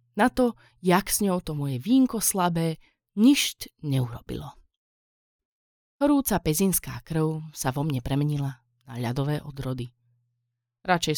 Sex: female